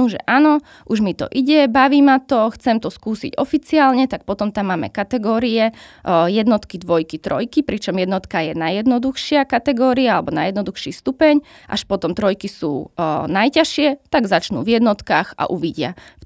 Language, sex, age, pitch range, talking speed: Slovak, female, 20-39, 180-225 Hz, 150 wpm